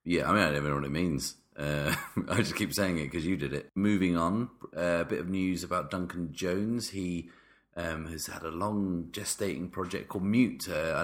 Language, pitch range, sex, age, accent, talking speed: English, 75-95 Hz, male, 30-49, British, 225 wpm